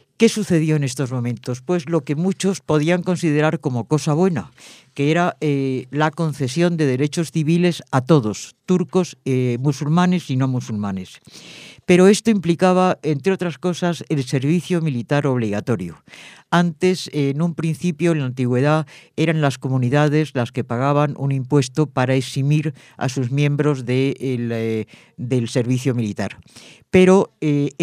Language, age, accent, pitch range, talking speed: English, 50-69, Spanish, 125-160 Hz, 145 wpm